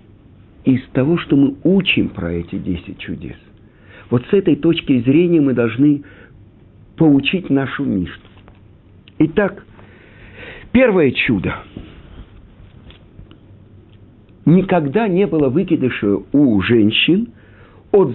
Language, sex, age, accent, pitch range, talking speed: Russian, male, 50-69, native, 100-145 Hz, 95 wpm